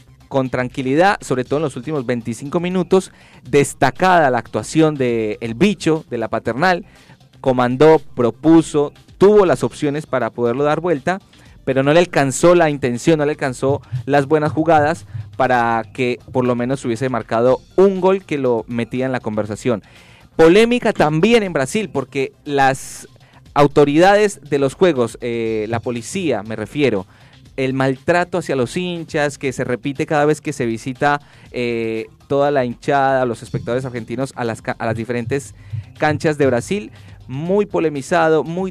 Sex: male